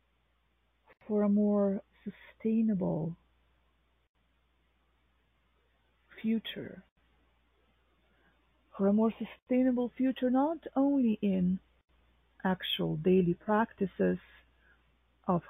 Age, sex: 40-59, female